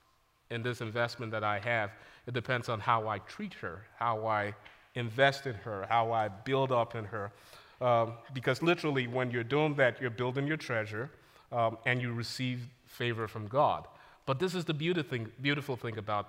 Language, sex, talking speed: English, male, 185 wpm